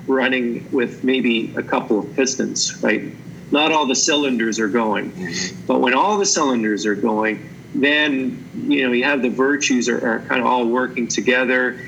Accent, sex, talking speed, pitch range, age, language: American, male, 175 wpm, 125-165 Hz, 40-59, English